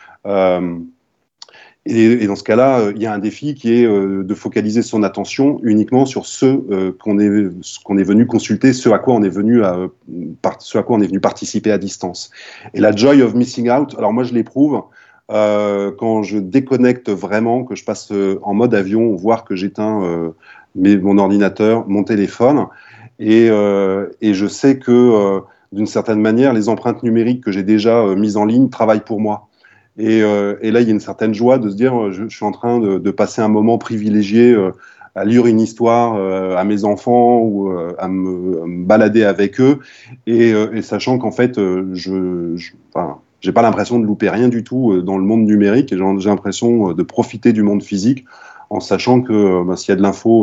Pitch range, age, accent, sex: 100-115 Hz, 30-49, French, male